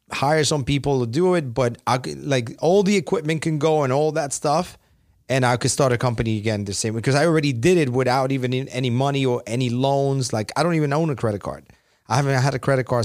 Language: English